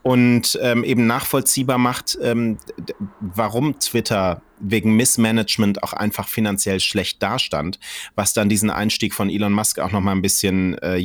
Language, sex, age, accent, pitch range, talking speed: German, male, 30-49, German, 105-125 Hz, 150 wpm